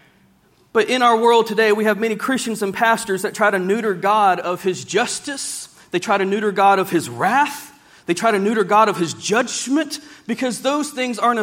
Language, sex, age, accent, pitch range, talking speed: English, male, 40-59, American, 205-255 Hz, 205 wpm